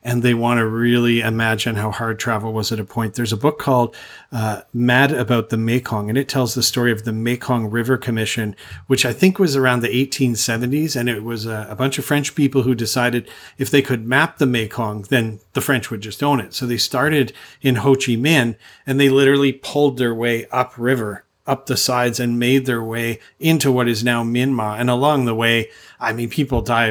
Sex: male